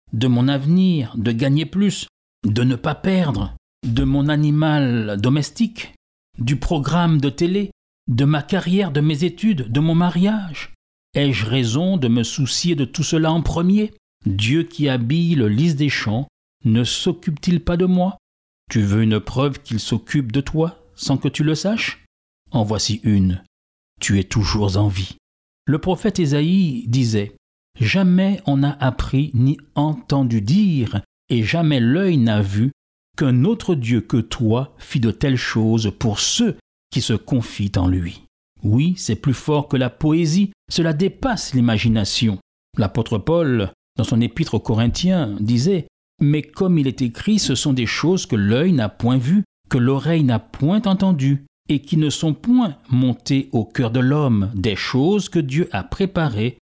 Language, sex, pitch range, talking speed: French, male, 115-165 Hz, 165 wpm